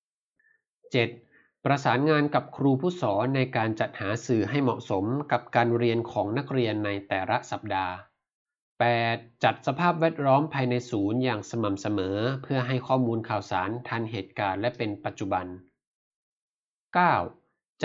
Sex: male